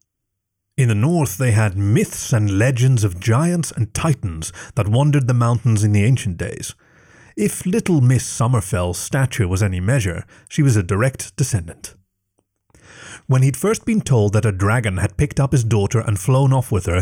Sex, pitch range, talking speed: male, 105-140 Hz, 180 wpm